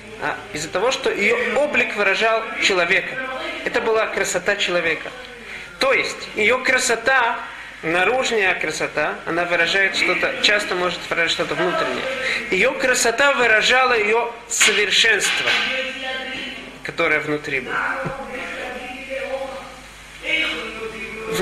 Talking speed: 95 wpm